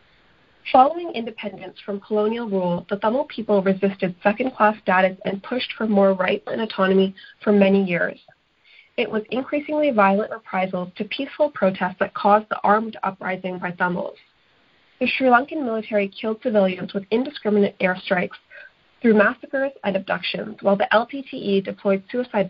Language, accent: Tamil, American